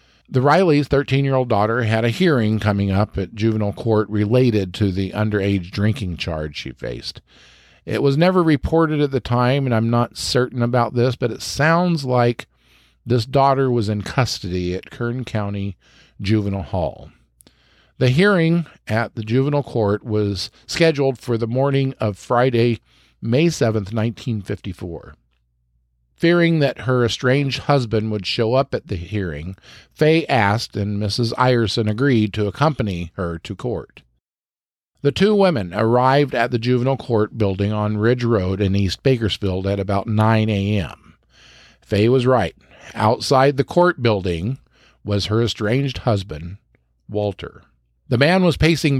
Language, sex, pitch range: English, male, 100-130 Hz